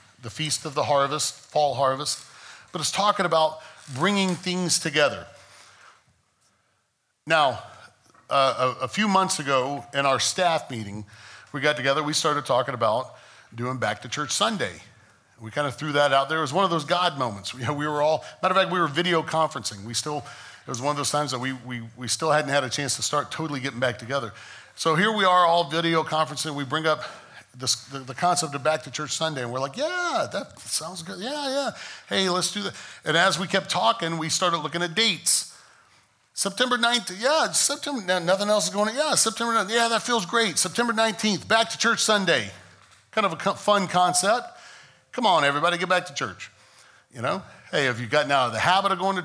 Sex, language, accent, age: male, English, American, 40-59